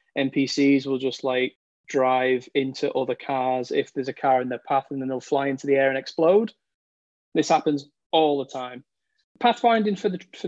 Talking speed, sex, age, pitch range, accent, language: 190 wpm, male, 20-39, 130-150 Hz, British, English